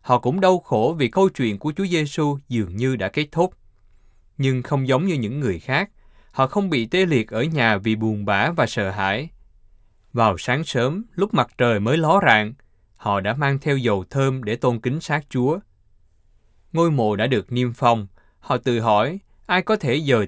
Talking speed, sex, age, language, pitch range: 200 wpm, male, 20-39, Vietnamese, 100-145 Hz